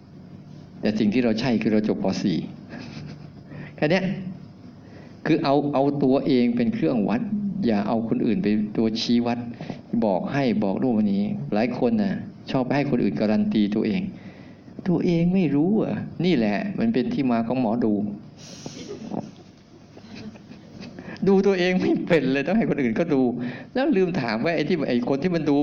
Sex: male